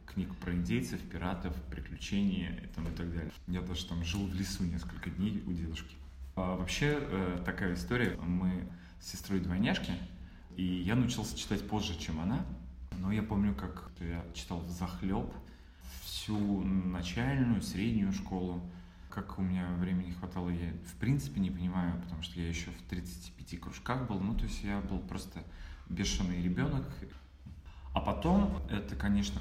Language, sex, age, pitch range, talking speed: Russian, male, 20-39, 85-95 Hz, 150 wpm